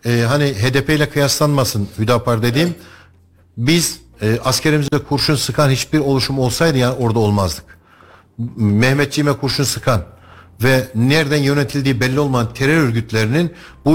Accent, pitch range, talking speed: native, 110-145 Hz, 125 wpm